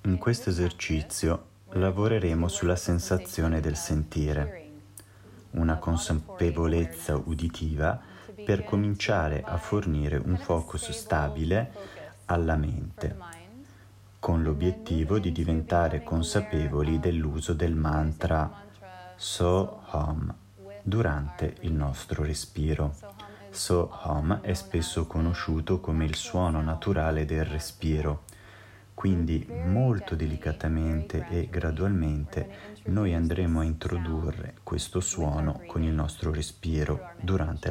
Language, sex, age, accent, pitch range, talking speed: Italian, male, 30-49, native, 80-95 Hz, 95 wpm